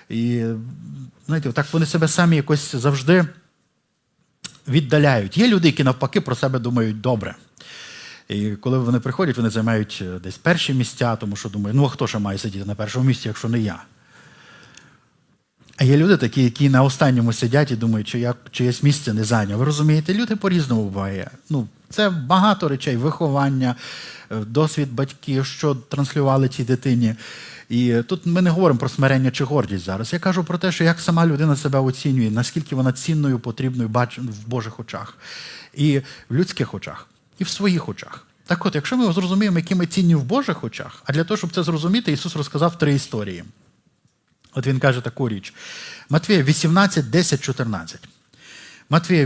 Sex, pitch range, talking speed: male, 120-165 Hz, 170 wpm